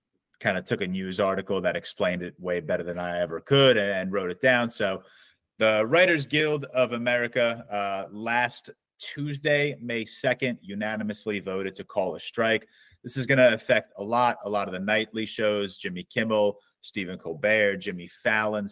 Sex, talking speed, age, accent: male, 175 wpm, 30-49, American